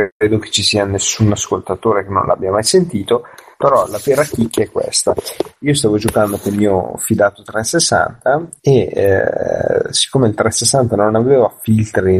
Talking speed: 160 wpm